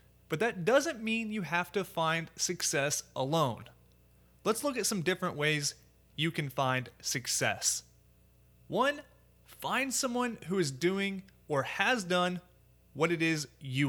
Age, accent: 30-49, American